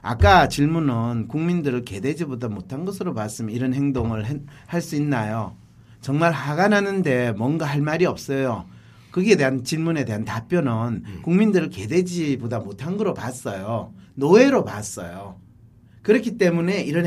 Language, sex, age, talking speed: English, male, 40-59, 115 wpm